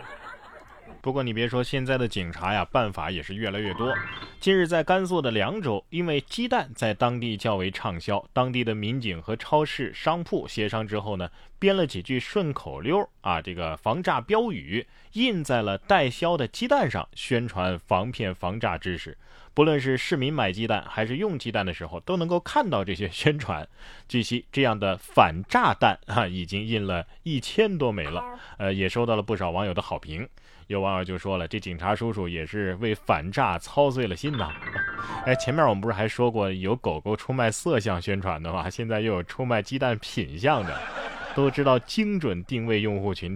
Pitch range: 95-145 Hz